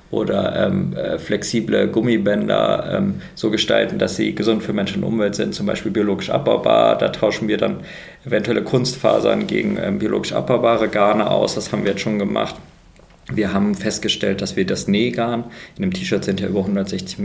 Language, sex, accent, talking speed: German, male, German, 175 wpm